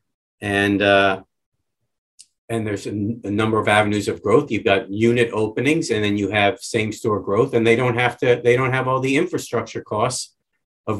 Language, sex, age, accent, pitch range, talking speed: English, male, 50-69, American, 105-120 Hz, 195 wpm